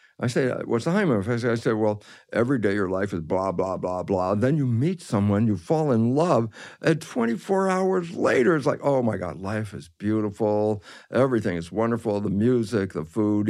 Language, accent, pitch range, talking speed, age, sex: English, American, 100-130 Hz, 205 wpm, 60-79, male